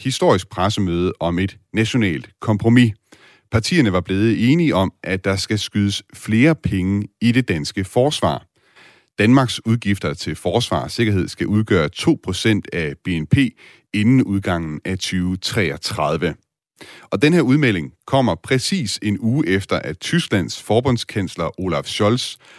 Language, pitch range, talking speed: Danish, 95-120 Hz, 130 wpm